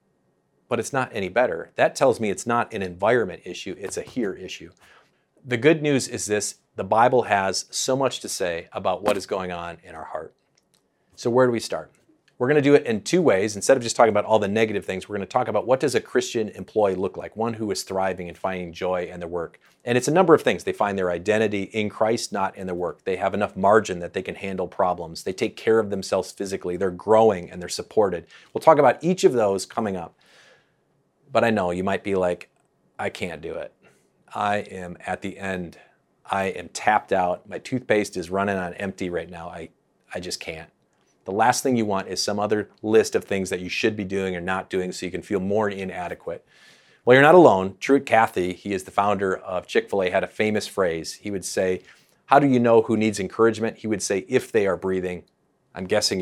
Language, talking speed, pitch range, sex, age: English, 230 wpm, 90-110 Hz, male, 40-59